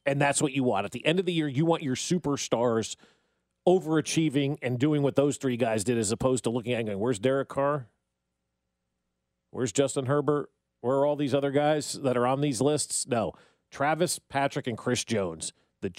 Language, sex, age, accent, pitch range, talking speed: English, male, 40-59, American, 120-155 Hz, 205 wpm